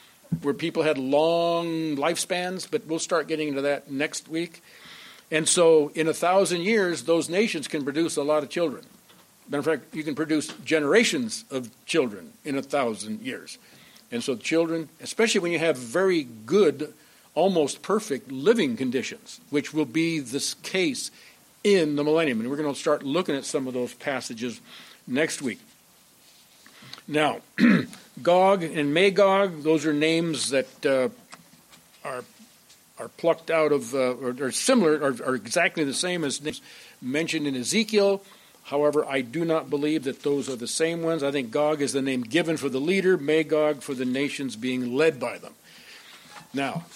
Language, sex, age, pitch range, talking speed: English, male, 60-79, 140-170 Hz, 170 wpm